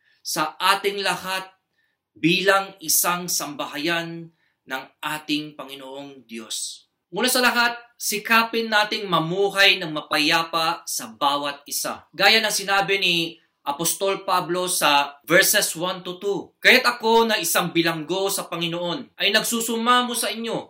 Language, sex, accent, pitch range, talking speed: English, male, Filipino, 160-210 Hz, 125 wpm